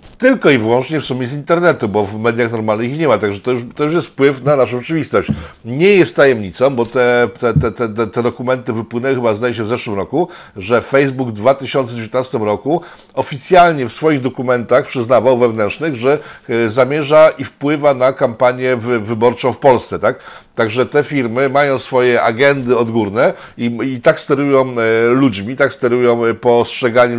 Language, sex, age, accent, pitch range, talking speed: Polish, male, 50-69, native, 115-145 Hz, 165 wpm